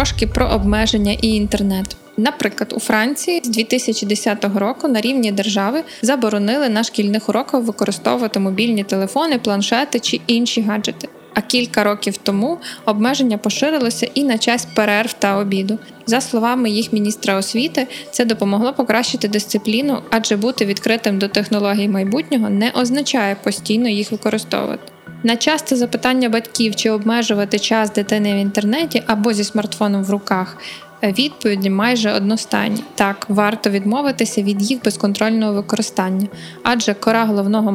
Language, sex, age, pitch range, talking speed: Ukrainian, female, 20-39, 205-235 Hz, 135 wpm